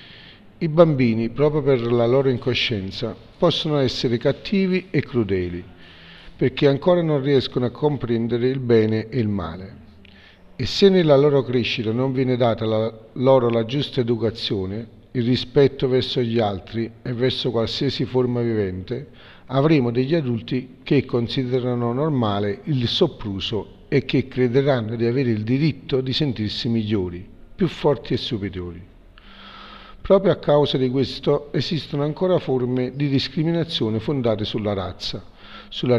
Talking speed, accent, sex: 135 wpm, native, male